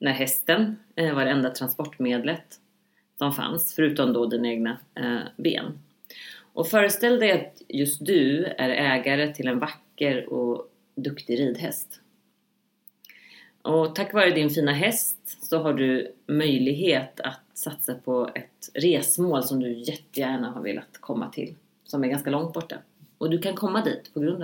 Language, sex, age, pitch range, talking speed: English, female, 30-49, 135-175 Hz, 150 wpm